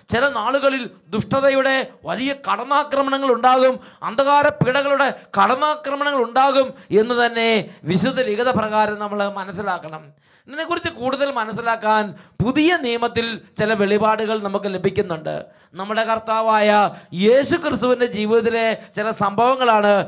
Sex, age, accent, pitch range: male, 20-39, Indian, 190-240 Hz